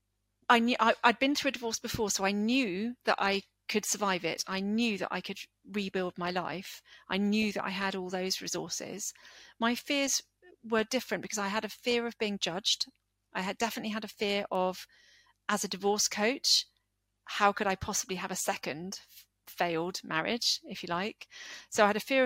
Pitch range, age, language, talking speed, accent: 175-215 Hz, 40-59, English, 195 wpm, British